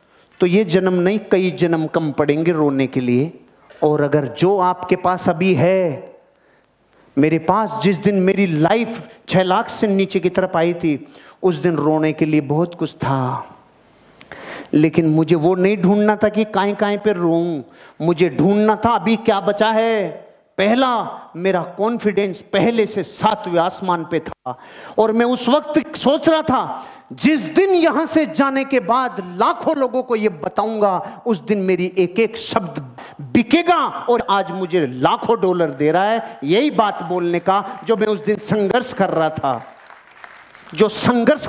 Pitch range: 170-220 Hz